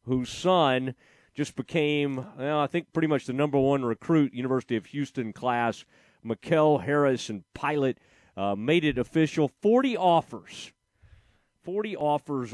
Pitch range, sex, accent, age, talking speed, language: 120-160 Hz, male, American, 40-59, 135 wpm, English